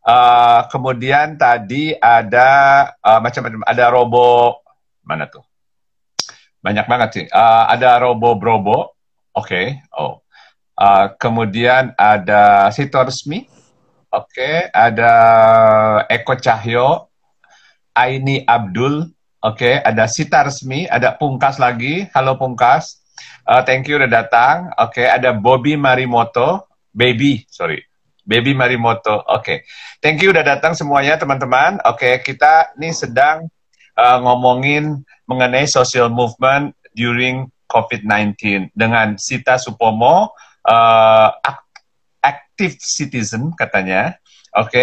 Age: 50-69